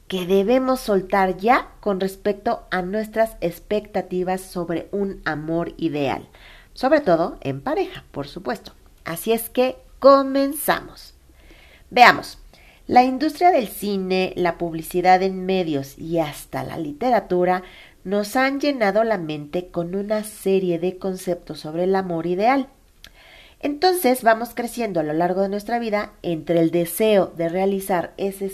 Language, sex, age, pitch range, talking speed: Spanish, female, 40-59, 175-230 Hz, 135 wpm